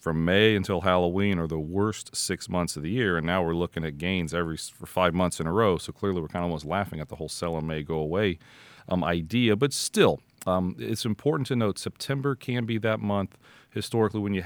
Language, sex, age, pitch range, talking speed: English, male, 40-59, 90-120 Hz, 235 wpm